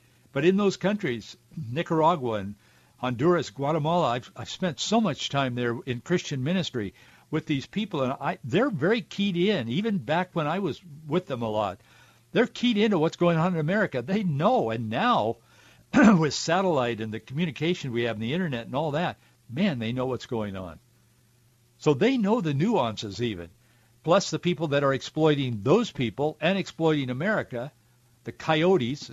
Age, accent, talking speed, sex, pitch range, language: 60-79, American, 175 wpm, male, 120-180 Hz, English